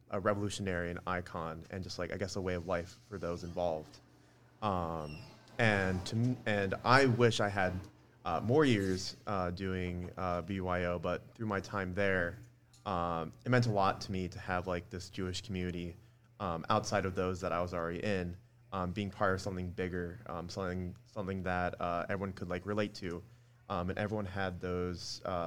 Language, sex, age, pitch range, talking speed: English, male, 30-49, 95-110 Hz, 190 wpm